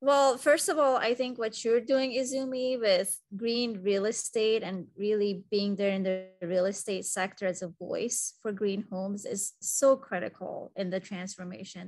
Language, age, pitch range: English, 20-39, 200-250 Hz